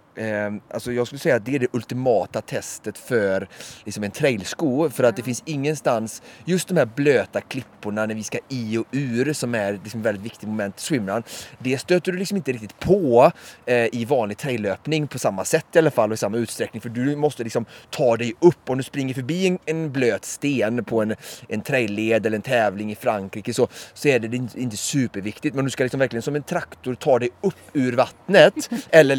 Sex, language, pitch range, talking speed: male, Swedish, 105-130 Hz, 210 wpm